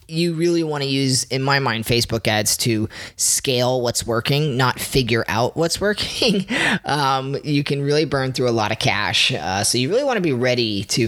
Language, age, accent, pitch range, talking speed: English, 20-39, American, 115-145 Hz, 205 wpm